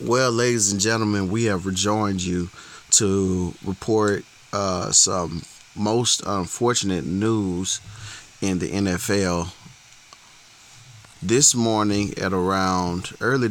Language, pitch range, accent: English, 95-115 Hz, American